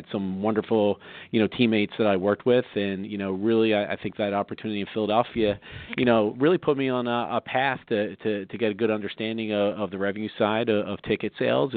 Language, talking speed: English, 230 wpm